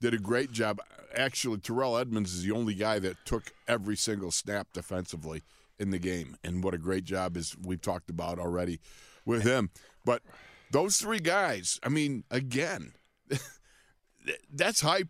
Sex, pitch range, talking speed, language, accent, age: male, 105-140 Hz, 165 wpm, English, American, 50-69